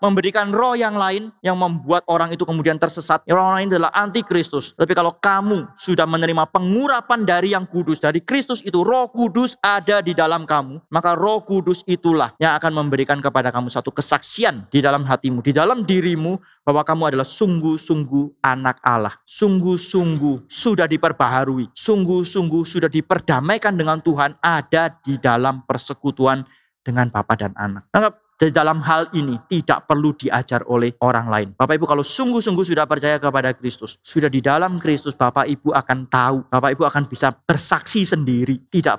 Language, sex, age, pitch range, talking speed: Indonesian, male, 30-49, 135-180 Hz, 160 wpm